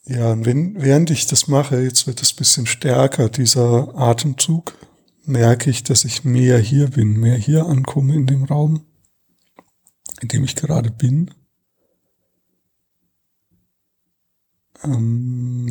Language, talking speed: German, 125 wpm